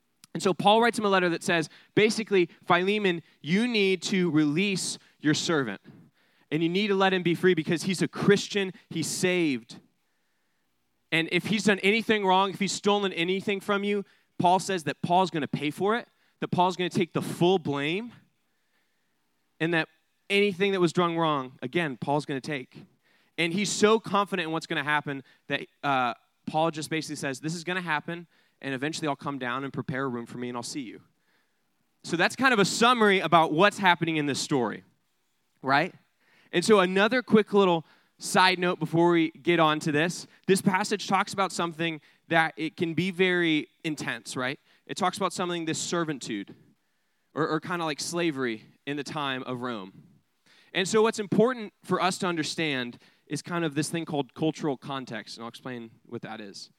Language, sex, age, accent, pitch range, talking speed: English, male, 20-39, American, 150-190 Hz, 195 wpm